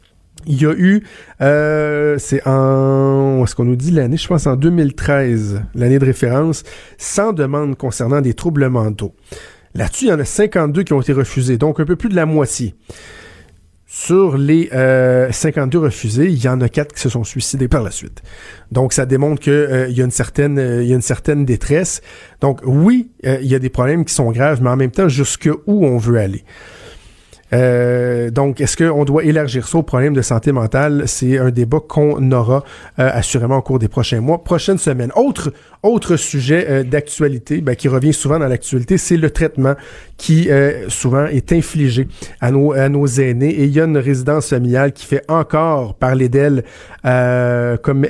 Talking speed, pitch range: 190 wpm, 125-155 Hz